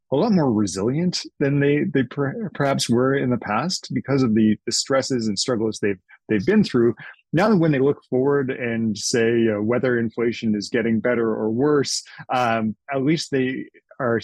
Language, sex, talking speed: English, male, 190 wpm